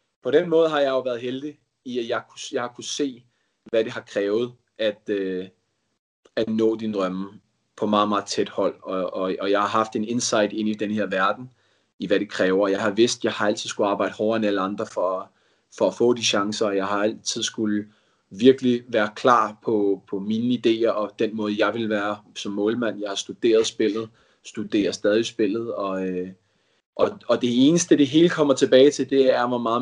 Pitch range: 100-120 Hz